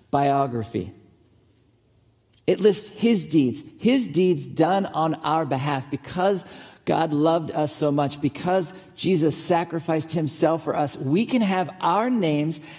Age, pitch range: 40-59, 120-160 Hz